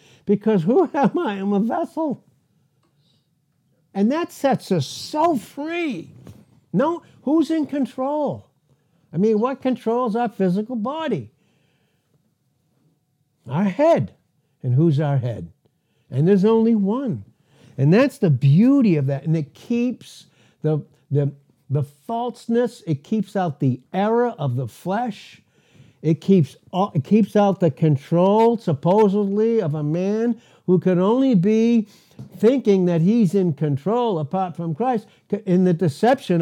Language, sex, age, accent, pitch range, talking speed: English, male, 60-79, American, 150-225 Hz, 135 wpm